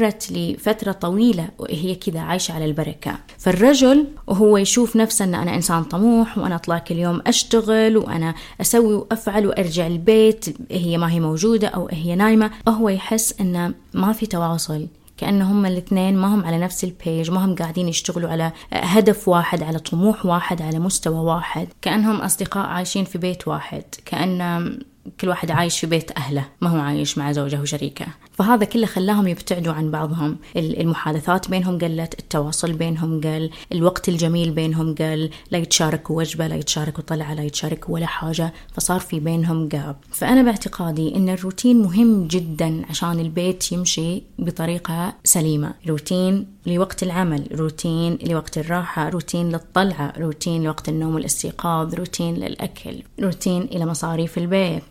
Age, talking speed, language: 20-39, 150 wpm, Arabic